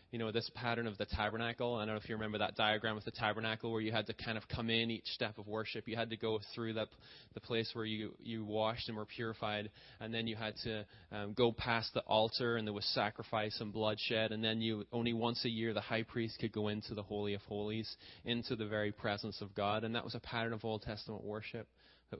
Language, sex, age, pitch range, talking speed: English, male, 20-39, 105-115 Hz, 255 wpm